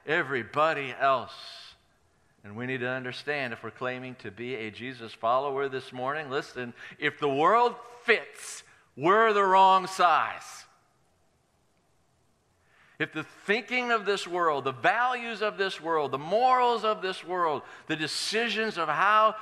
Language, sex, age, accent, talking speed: English, male, 50-69, American, 140 wpm